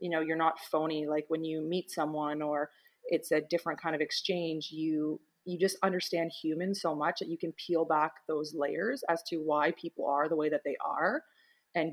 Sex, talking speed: female, 210 wpm